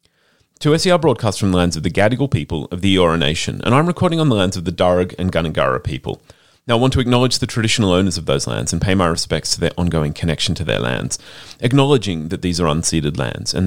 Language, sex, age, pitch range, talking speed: English, male, 30-49, 90-120 Hz, 240 wpm